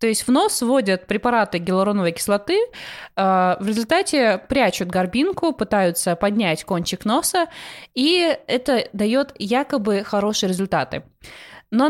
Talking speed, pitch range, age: 115 wpm, 195-255 Hz, 20-39